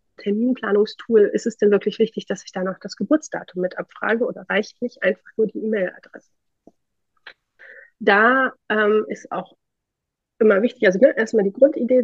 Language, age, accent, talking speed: German, 30-49, German, 160 wpm